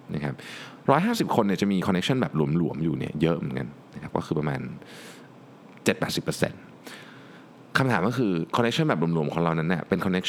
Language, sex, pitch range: Thai, male, 85-125 Hz